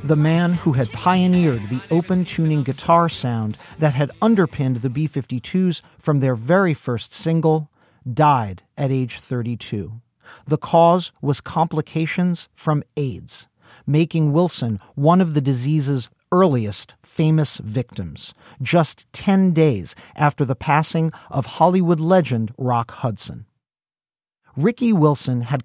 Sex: male